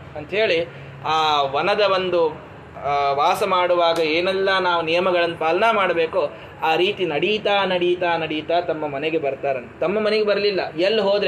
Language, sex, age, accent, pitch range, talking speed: Kannada, male, 20-39, native, 160-225 Hz, 130 wpm